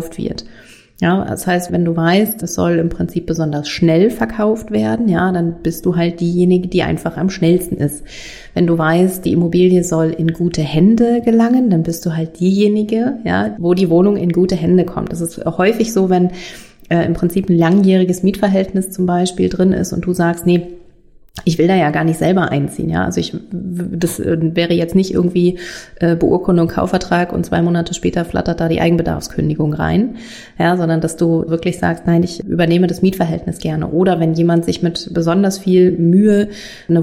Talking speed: 190 wpm